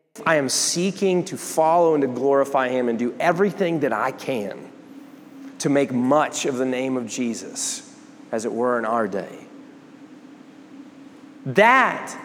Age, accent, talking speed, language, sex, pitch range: 30-49, American, 145 wpm, English, male, 165-275 Hz